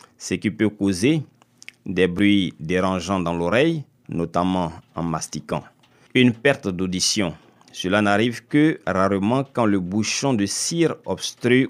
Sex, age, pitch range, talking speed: male, 50-69, 95-135 Hz, 130 wpm